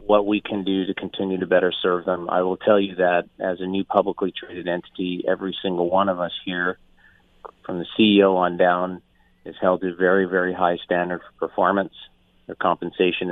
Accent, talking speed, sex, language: American, 200 wpm, male, English